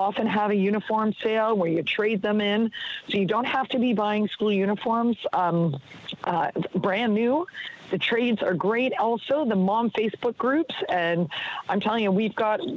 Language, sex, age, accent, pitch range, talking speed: English, female, 40-59, American, 185-225 Hz, 180 wpm